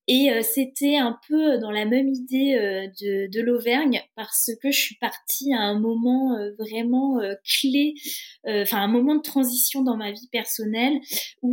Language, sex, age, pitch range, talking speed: French, female, 20-39, 210-260 Hz, 185 wpm